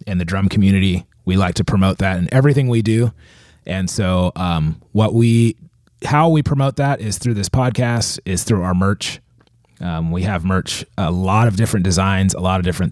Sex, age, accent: male, 30-49, American